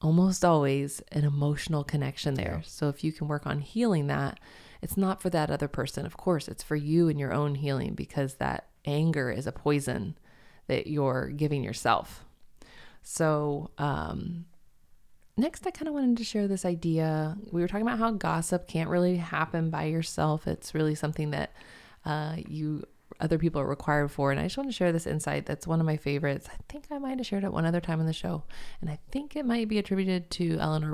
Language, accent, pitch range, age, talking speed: English, American, 145-180 Hz, 20-39, 205 wpm